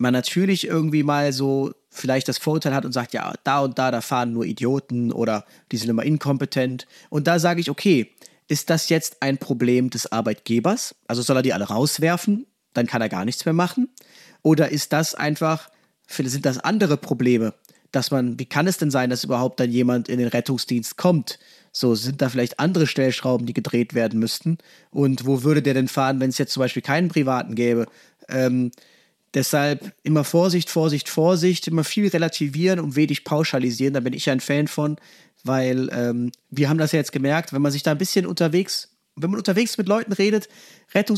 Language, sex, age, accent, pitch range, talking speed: German, male, 30-49, German, 130-180 Hz, 200 wpm